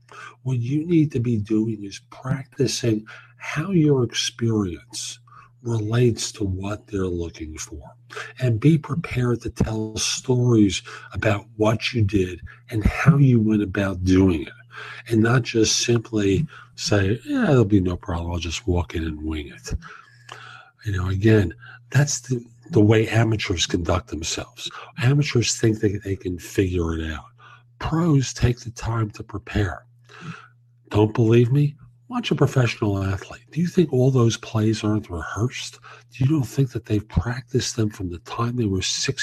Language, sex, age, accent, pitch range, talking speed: English, male, 50-69, American, 105-130 Hz, 160 wpm